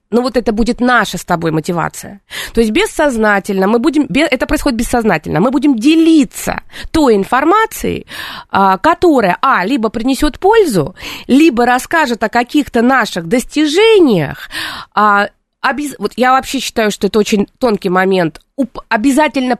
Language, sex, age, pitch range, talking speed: Russian, female, 30-49, 200-290 Hz, 130 wpm